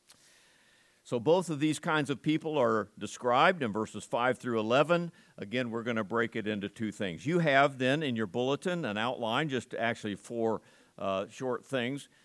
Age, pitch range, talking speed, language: 50-69, 120-160 Hz, 180 wpm, English